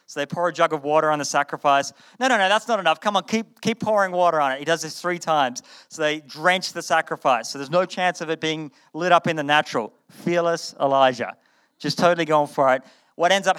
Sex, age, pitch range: male, 30-49, 145-175 Hz